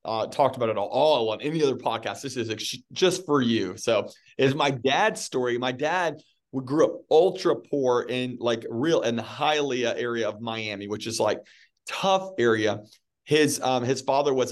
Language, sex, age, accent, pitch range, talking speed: English, male, 40-59, American, 115-140 Hz, 195 wpm